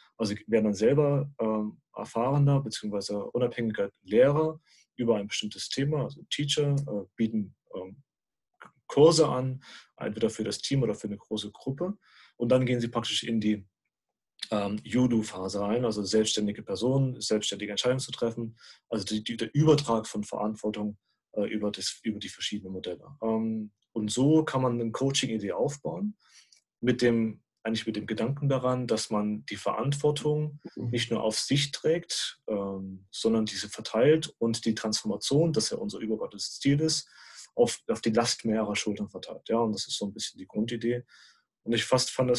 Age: 30-49